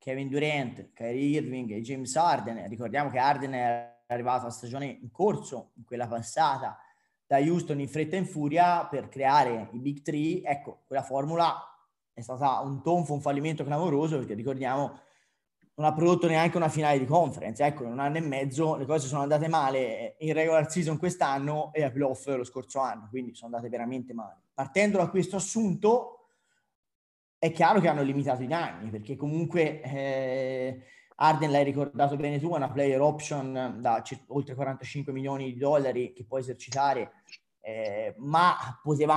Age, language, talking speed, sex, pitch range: 20-39, Italian, 170 wpm, male, 130-160 Hz